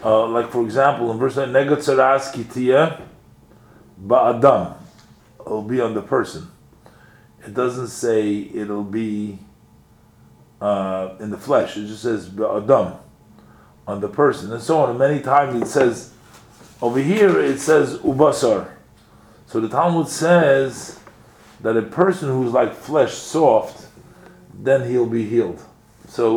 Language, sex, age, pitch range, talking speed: English, male, 40-59, 100-125 Hz, 125 wpm